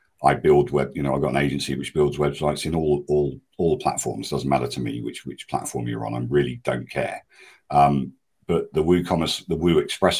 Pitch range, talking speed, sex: 70-75 Hz, 220 wpm, male